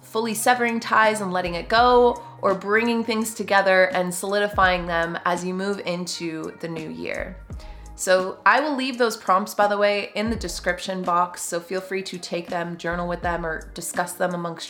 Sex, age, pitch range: female, 20-39, 180-225 Hz